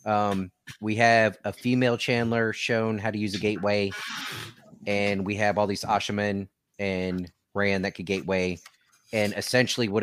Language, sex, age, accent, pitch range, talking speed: English, male, 30-49, American, 100-115 Hz, 155 wpm